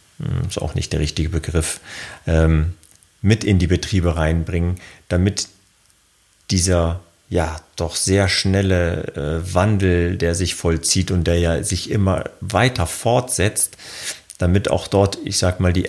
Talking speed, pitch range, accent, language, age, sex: 145 wpm, 85-95 Hz, German, German, 40-59, male